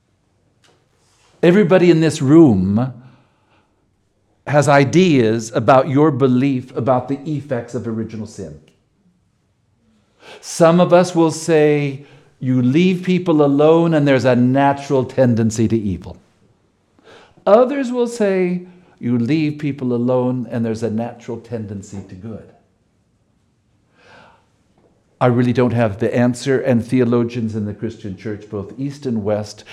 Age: 60-79